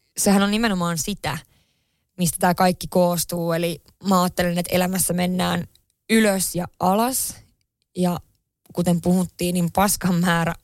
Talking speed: 125 wpm